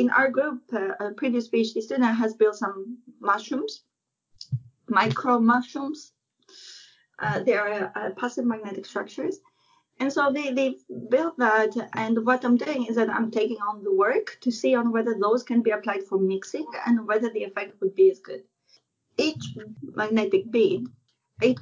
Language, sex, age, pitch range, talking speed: English, female, 30-49, 210-255 Hz, 165 wpm